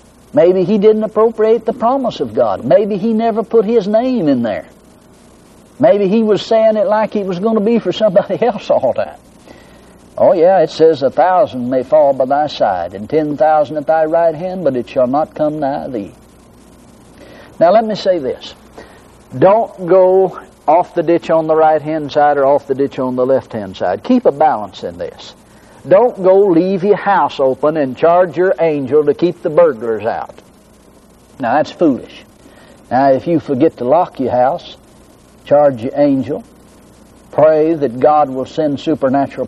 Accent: American